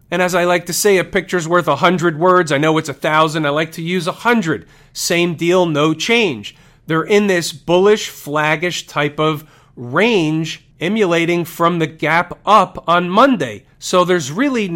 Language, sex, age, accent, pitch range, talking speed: English, male, 40-59, American, 145-185 Hz, 170 wpm